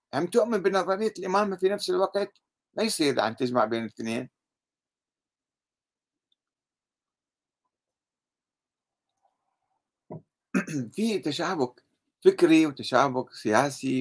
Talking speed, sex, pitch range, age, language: 75 wpm, male, 125-195 Hz, 60-79, Arabic